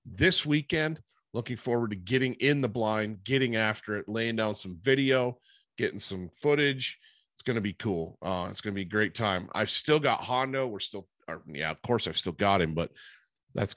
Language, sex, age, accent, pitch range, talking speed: English, male, 40-59, American, 90-115 Hz, 210 wpm